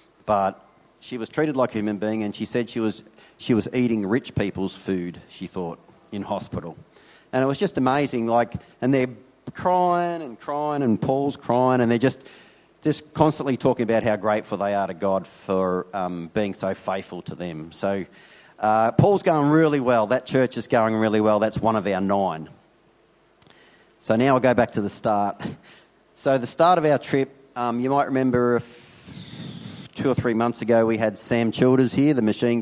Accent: Australian